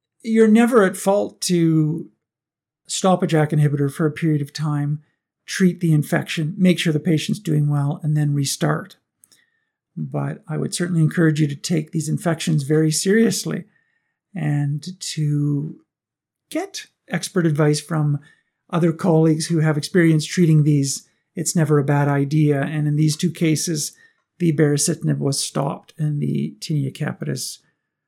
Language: English